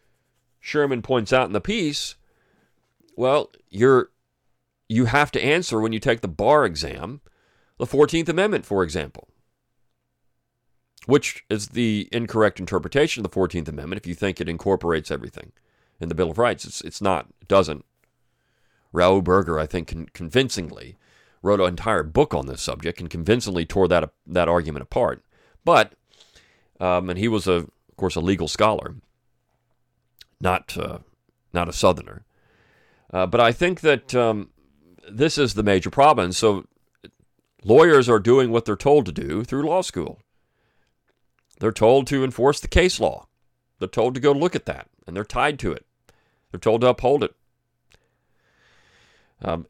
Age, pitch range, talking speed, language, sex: 40-59, 90-120 Hz, 160 wpm, English, male